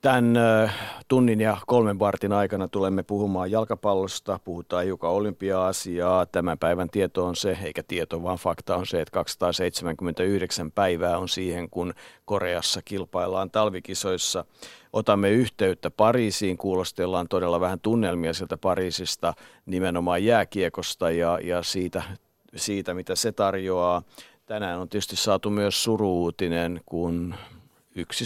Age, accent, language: 50-69, native, Finnish